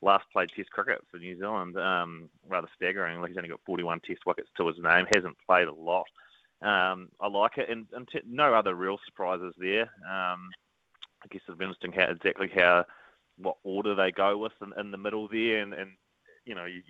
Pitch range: 90-105 Hz